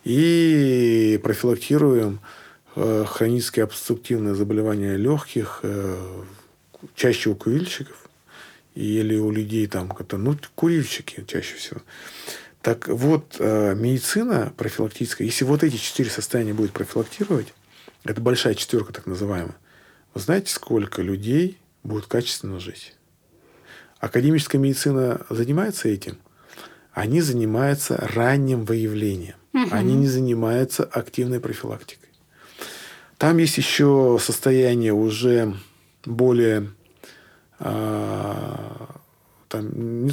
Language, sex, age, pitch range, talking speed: Russian, male, 40-59, 105-135 Hz, 90 wpm